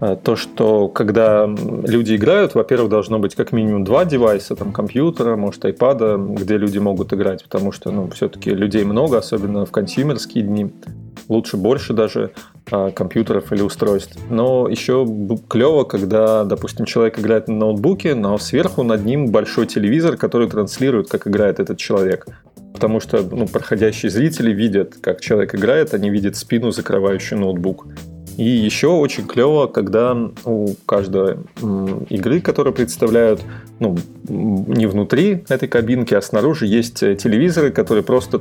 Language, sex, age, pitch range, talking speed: Russian, male, 30-49, 100-115 Hz, 145 wpm